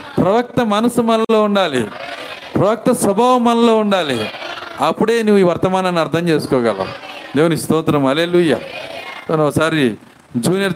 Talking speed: 105 wpm